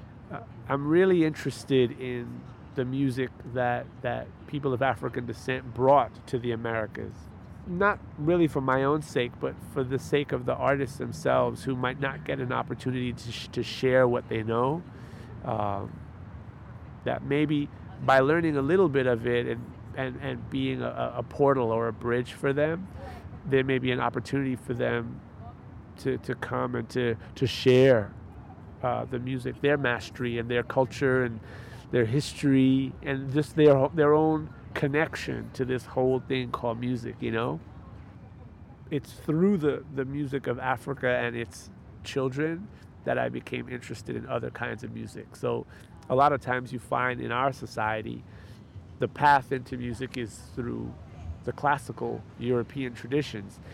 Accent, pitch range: American, 115-135 Hz